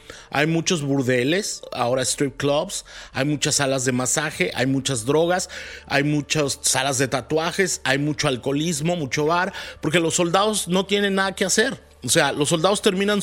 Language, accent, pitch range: Spanish, Mexican, 135-180 Hz